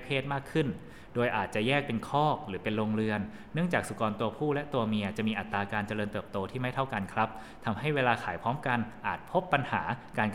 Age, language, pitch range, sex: 20-39, Thai, 100-120 Hz, male